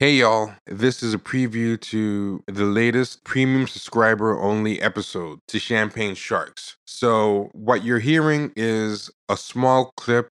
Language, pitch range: English, 100-130 Hz